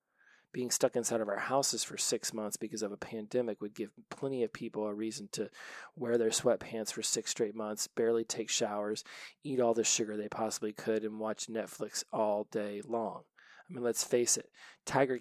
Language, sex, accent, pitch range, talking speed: English, male, American, 110-125 Hz, 195 wpm